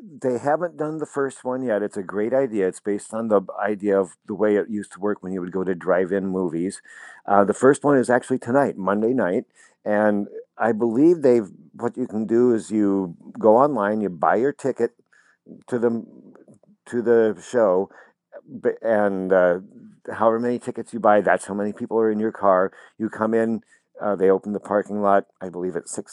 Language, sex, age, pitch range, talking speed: English, male, 50-69, 100-120 Hz, 200 wpm